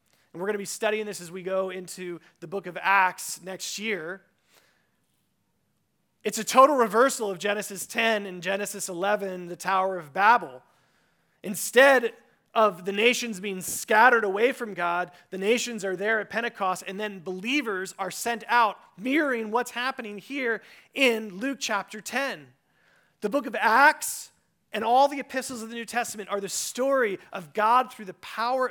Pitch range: 190-245 Hz